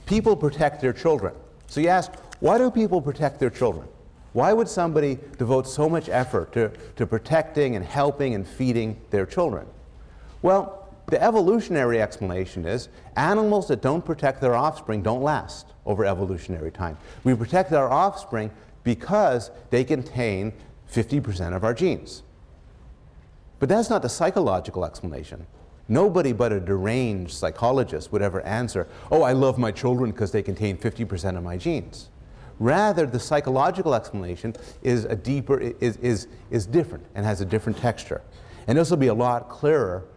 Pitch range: 95-140 Hz